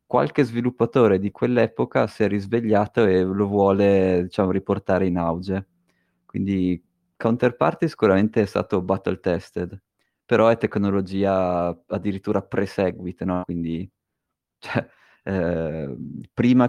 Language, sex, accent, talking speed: Italian, male, native, 105 wpm